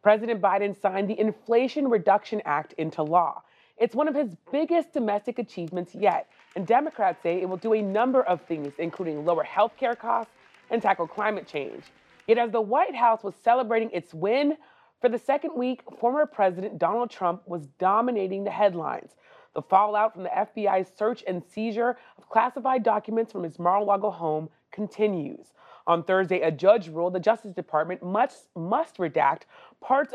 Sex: female